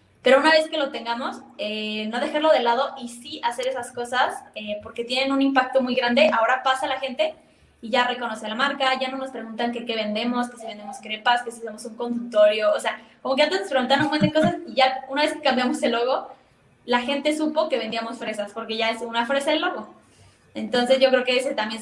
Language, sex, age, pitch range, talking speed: Spanish, female, 10-29, 230-275 Hz, 235 wpm